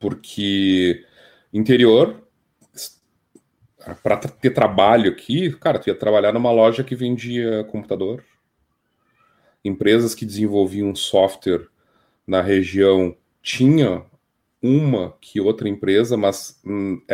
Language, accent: Portuguese, Brazilian